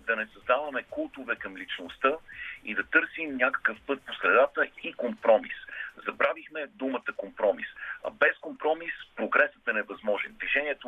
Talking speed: 140 wpm